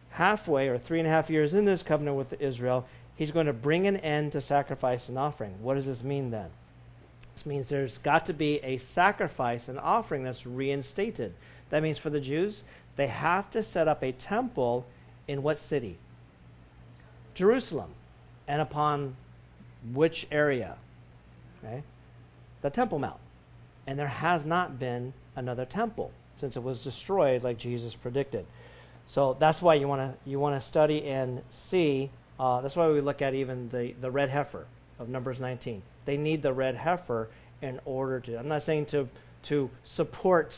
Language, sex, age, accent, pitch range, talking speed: English, male, 50-69, American, 120-150 Hz, 170 wpm